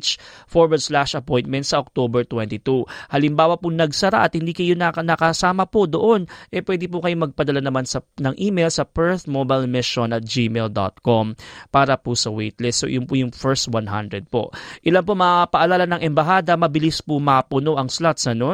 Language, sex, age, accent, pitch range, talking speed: Filipino, male, 20-39, native, 125-170 Hz, 180 wpm